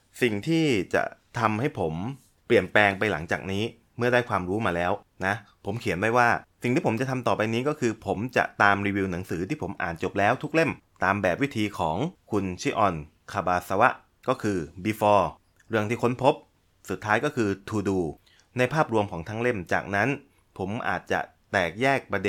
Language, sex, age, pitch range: Thai, male, 20-39, 95-120 Hz